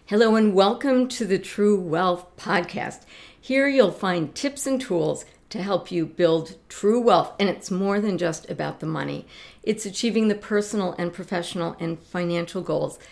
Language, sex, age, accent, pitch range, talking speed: English, female, 50-69, American, 175-230 Hz, 170 wpm